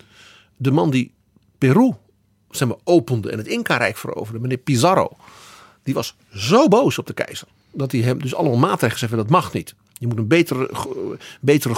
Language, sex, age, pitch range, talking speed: Dutch, male, 50-69, 120-185 Hz, 185 wpm